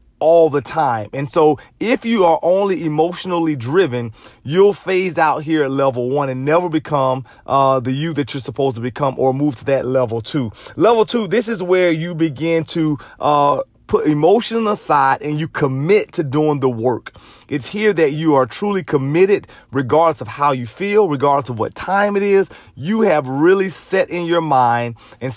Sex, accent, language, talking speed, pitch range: male, American, English, 190 wpm, 135-180 Hz